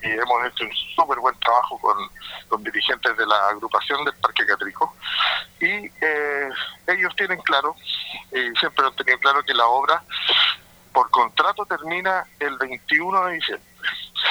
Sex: male